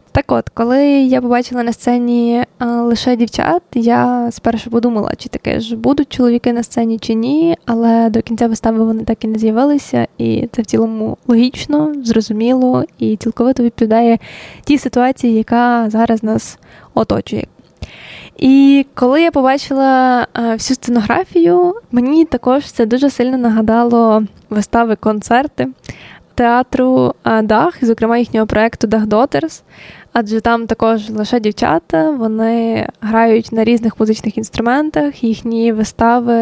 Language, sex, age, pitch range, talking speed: Ukrainian, female, 10-29, 225-250 Hz, 130 wpm